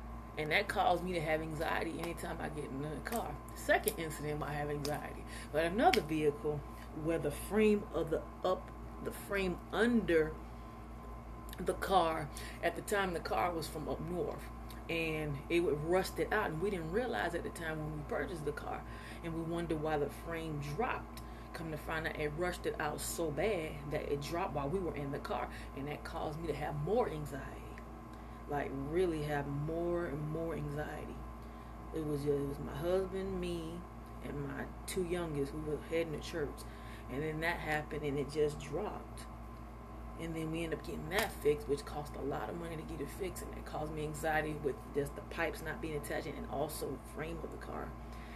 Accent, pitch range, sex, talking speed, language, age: American, 145-170 Hz, female, 200 wpm, English, 30-49